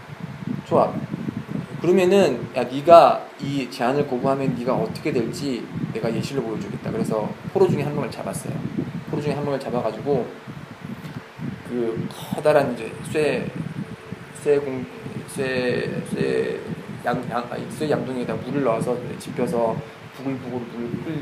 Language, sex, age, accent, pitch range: Korean, male, 20-39, native, 125-160 Hz